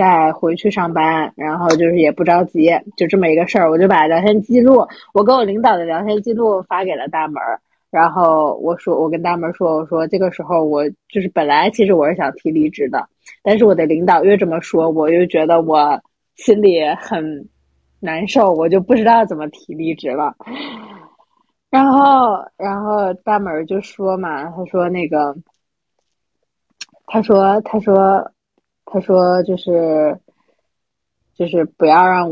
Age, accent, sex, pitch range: 20-39, native, female, 160-195 Hz